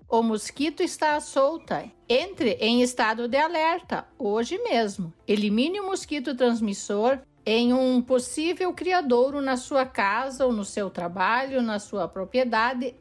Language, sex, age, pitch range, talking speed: Portuguese, female, 60-79, 240-315 Hz, 140 wpm